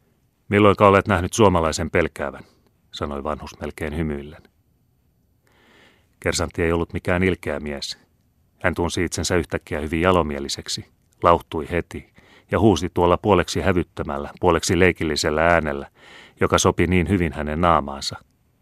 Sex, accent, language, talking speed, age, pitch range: male, native, Finnish, 120 wpm, 30-49, 85-105 Hz